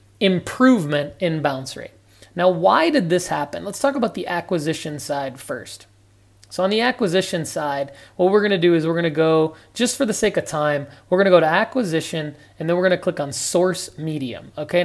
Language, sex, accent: English, male, American